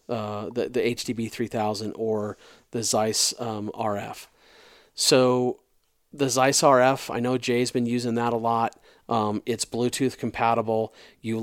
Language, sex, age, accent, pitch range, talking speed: English, male, 40-59, American, 110-120 Hz, 140 wpm